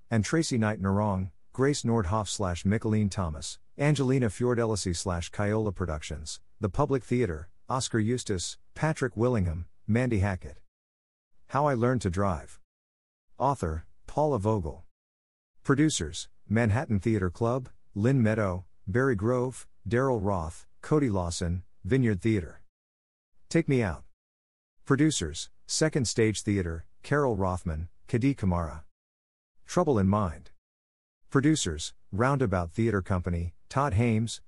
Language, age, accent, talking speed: English, 50-69, American, 110 wpm